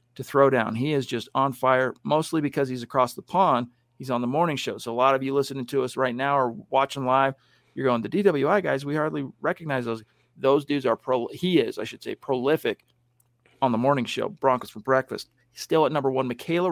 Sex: male